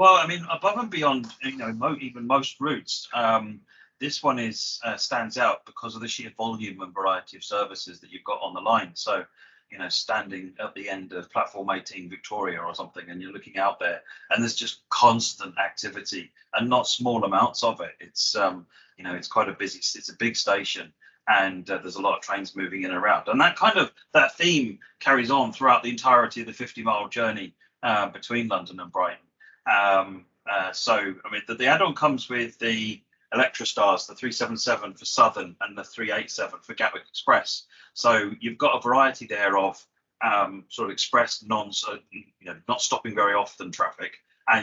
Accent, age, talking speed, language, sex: British, 30-49, 200 wpm, English, male